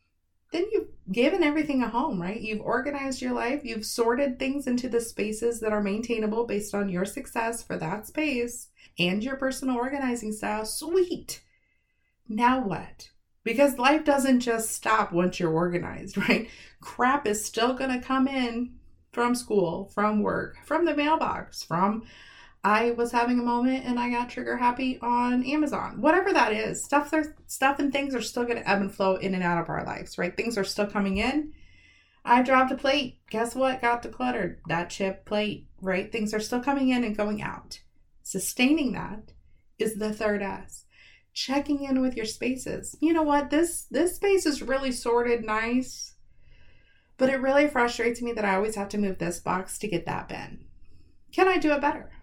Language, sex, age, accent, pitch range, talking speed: English, female, 30-49, American, 205-265 Hz, 185 wpm